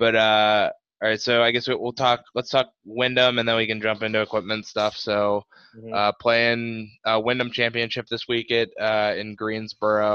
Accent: American